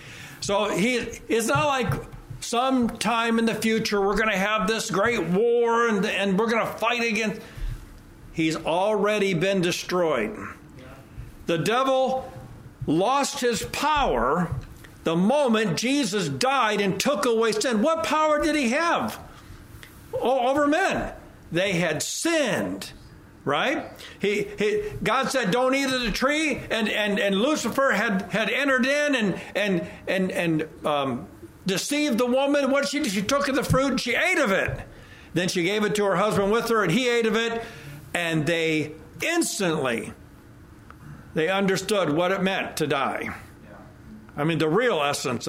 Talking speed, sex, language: 155 wpm, male, English